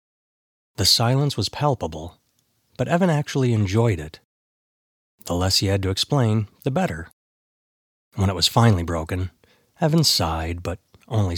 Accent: American